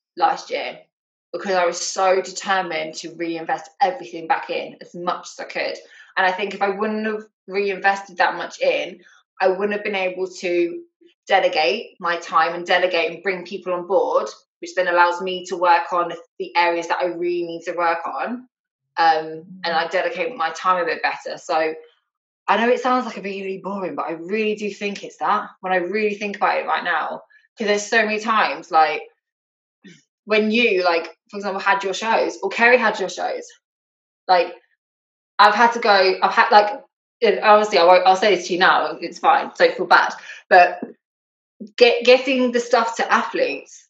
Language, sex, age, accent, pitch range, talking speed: English, female, 20-39, British, 180-235 Hz, 195 wpm